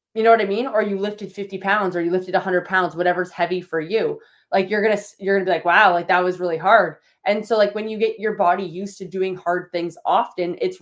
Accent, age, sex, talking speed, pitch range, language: American, 20-39, female, 270 wpm, 175-205 Hz, English